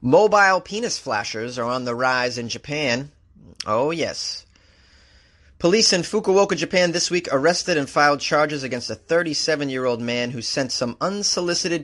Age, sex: 30-49, male